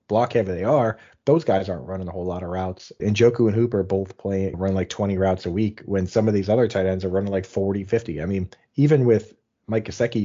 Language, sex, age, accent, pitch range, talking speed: English, male, 30-49, American, 95-115 Hz, 250 wpm